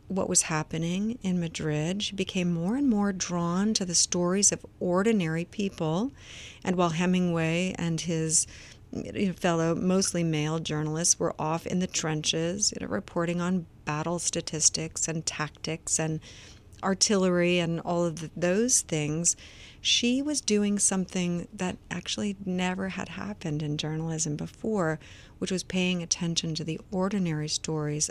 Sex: female